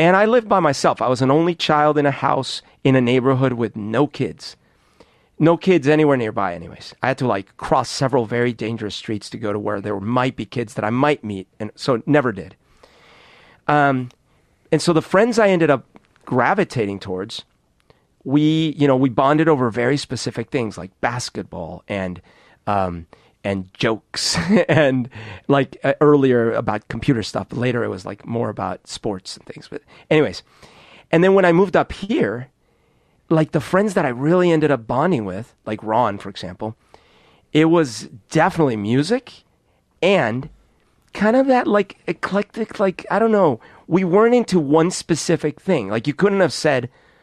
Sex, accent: male, American